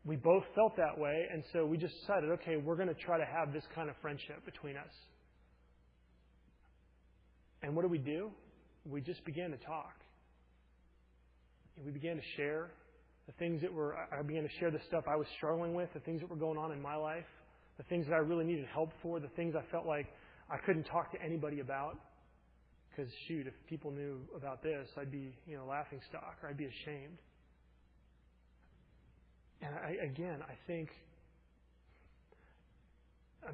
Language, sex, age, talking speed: English, male, 30-49, 185 wpm